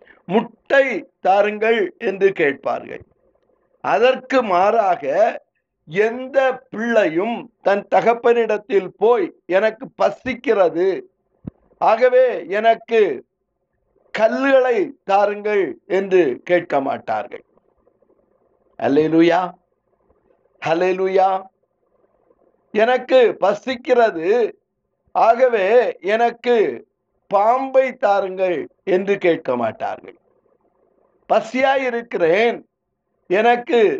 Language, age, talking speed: Tamil, 60-79, 55 wpm